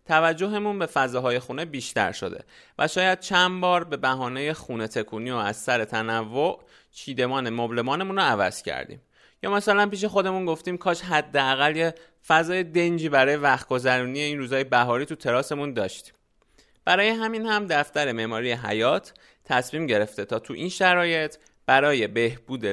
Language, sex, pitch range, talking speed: Persian, male, 125-175 Hz, 150 wpm